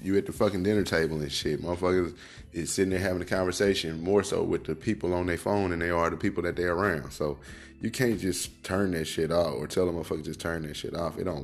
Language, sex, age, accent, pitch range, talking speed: English, male, 10-29, American, 75-90 Hz, 260 wpm